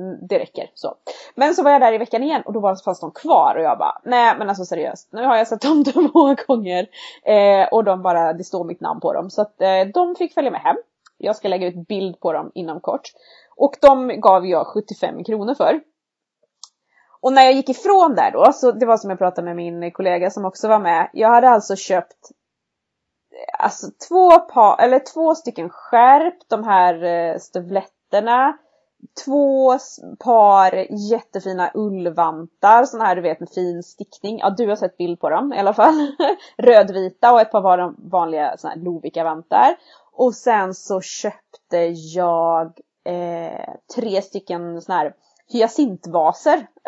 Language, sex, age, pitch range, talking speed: English, female, 20-39, 180-255 Hz, 175 wpm